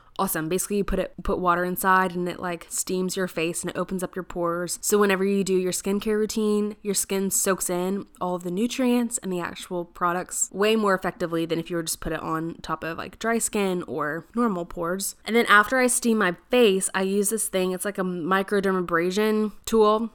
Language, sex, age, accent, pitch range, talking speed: English, female, 20-39, American, 175-205 Hz, 215 wpm